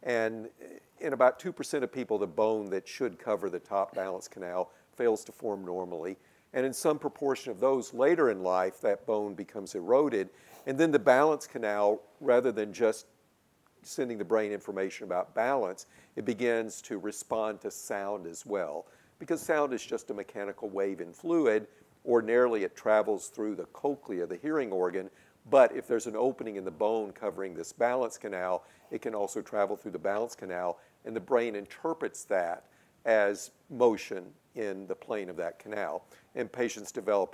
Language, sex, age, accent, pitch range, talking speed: English, male, 50-69, American, 100-140 Hz, 175 wpm